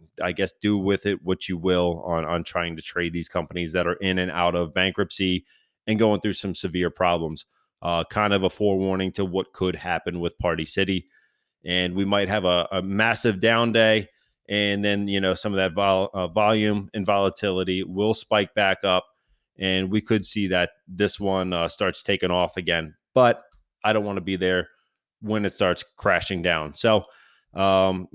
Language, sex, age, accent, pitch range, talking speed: English, male, 30-49, American, 90-115 Hz, 190 wpm